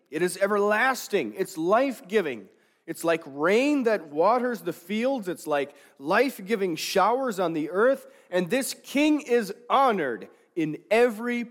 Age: 40-59